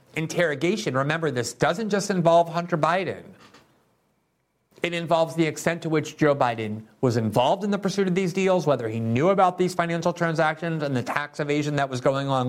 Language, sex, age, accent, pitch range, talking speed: English, male, 50-69, American, 130-170 Hz, 185 wpm